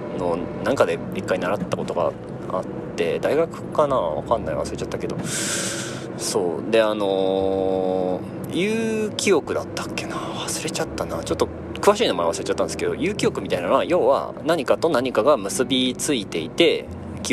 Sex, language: male, Japanese